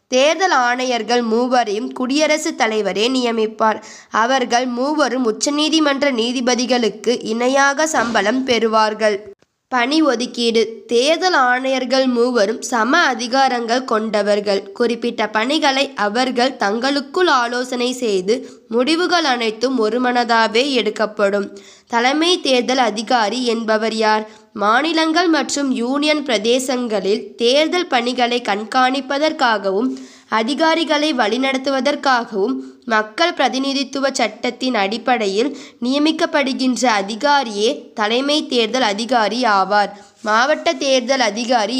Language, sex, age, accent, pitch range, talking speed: Tamil, female, 20-39, native, 220-270 Hz, 85 wpm